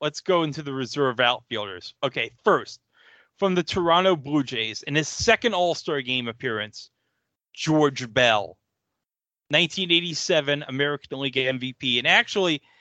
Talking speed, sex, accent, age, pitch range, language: 125 wpm, male, American, 30-49, 125-175 Hz, English